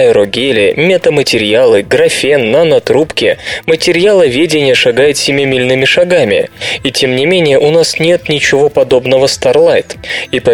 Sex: male